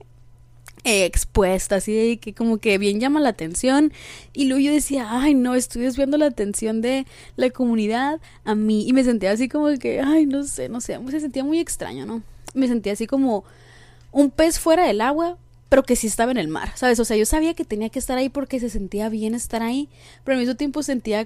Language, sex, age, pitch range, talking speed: Spanish, female, 20-39, 210-275 Hz, 215 wpm